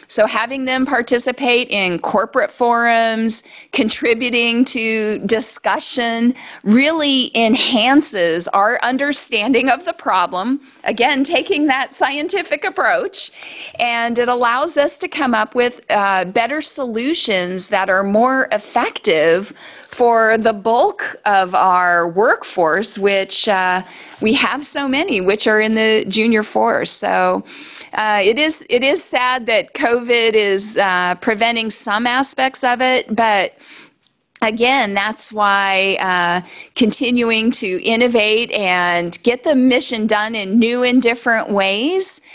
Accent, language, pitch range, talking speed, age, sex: American, English, 200-255 Hz, 125 wpm, 40-59, female